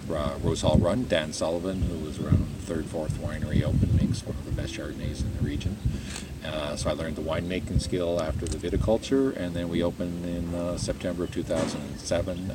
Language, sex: English, male